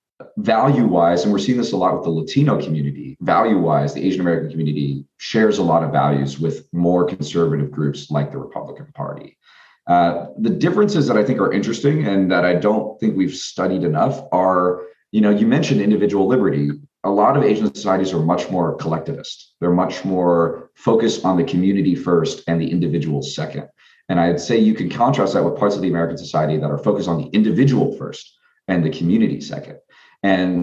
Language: English